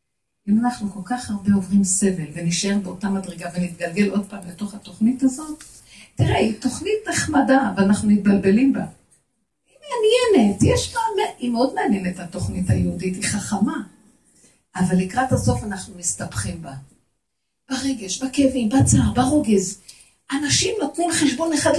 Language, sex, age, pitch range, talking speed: Hebrew, female, 50-69, 205-285 Hz, 125 wpm